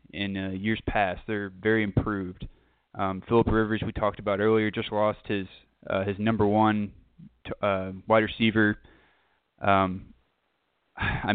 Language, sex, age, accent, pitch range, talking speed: English, male, 20-39, American, 95-110 Hz, 145 wpm